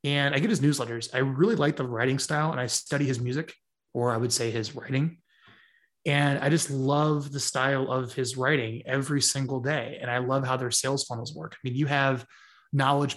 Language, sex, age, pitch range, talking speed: English, male, 20-39, 125-150 Hz, 215 wpm